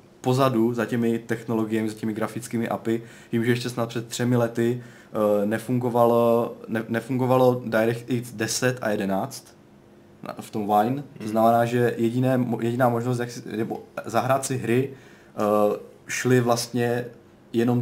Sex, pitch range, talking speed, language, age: male, 110-125 Hz, 125 wpm, Czech, 20-39